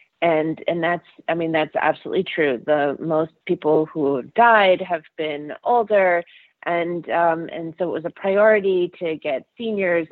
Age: 30-49